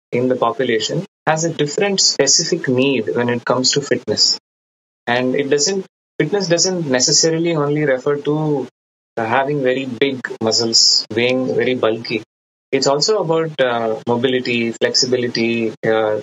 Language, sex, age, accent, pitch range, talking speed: English, male, 20-39, Indian, 115-150 Hz, 135 wpm